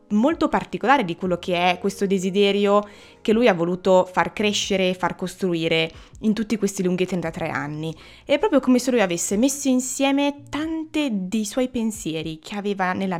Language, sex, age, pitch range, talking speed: Italian, female, 20-39, 170-250 Hz, 175 wpm